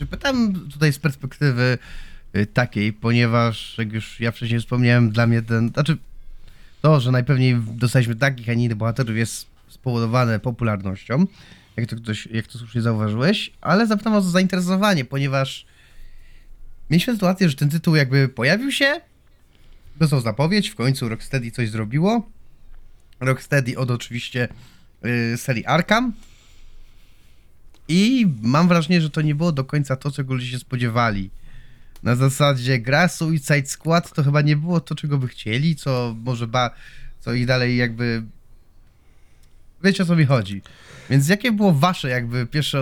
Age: 20-39